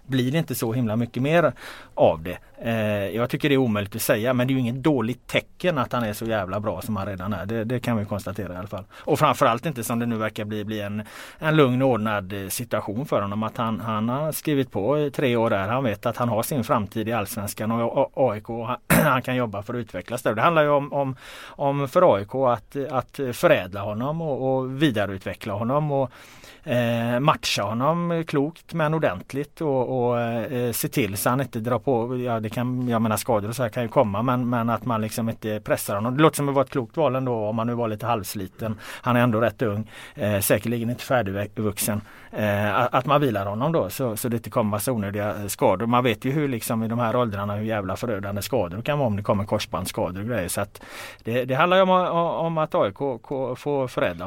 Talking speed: 235 wpm